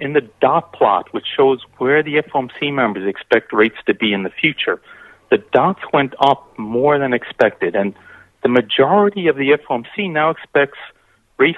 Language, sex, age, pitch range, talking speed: English, male, 40-59, 125-190 Hz, 170 wpm